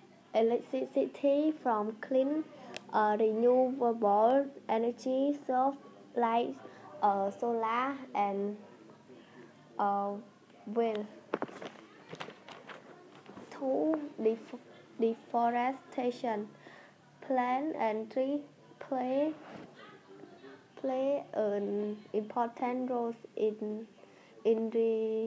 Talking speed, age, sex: 65 wpm, 10-29, female